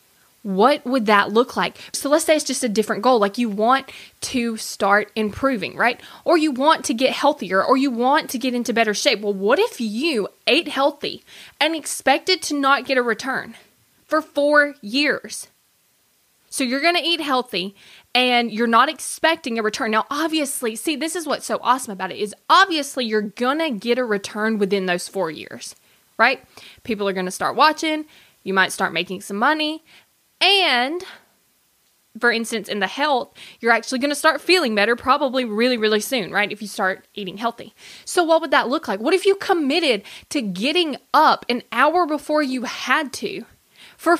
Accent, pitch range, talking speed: American, 220-305 Hz, 185 wpm